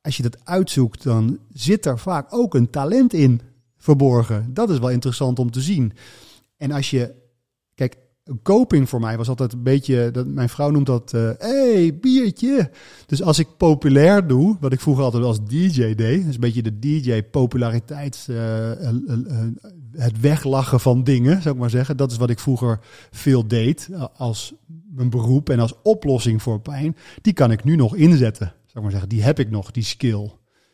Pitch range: 120-150 Hz